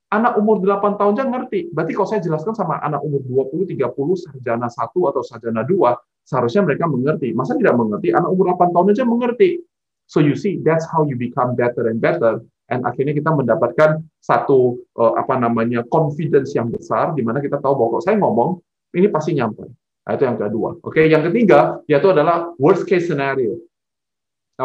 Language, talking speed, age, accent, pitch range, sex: Indonesian, 190 wpm, 30-49, native, 125-195 Hz, male